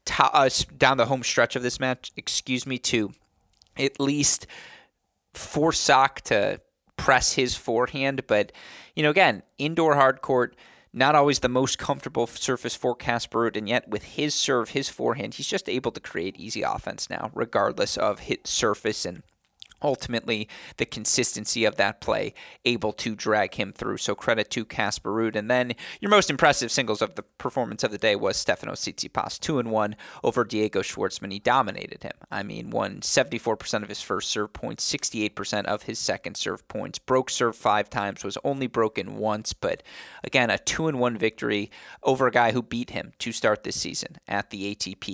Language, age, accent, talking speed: English, 30-49, American, 175 wpm